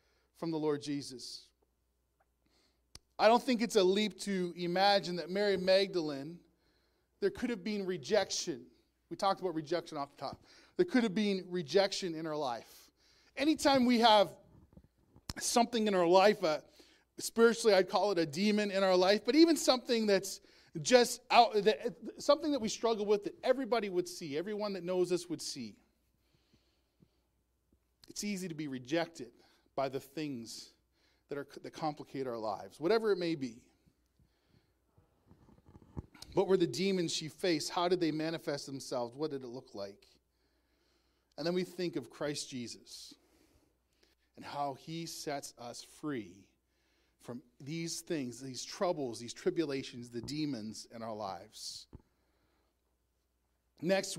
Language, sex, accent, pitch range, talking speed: English, male, American, 140-200 Hz, 150 wpm